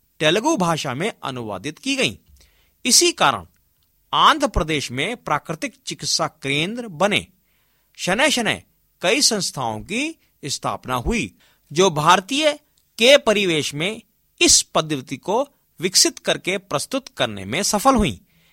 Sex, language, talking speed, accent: male, Hindi, 120 wpm, native